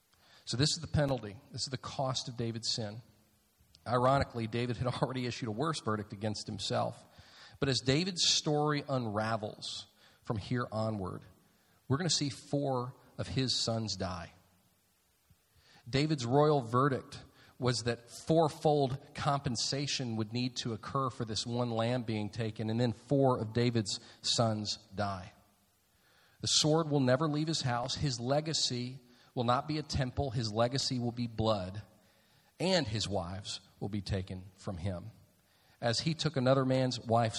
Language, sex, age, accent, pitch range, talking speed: English, male, 40-59, American, 110-140 Hz, 155 wpm